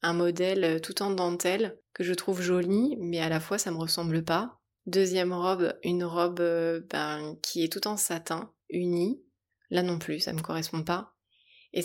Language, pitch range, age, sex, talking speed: French, 165-190 Hz, 20-39, female, 185 wpm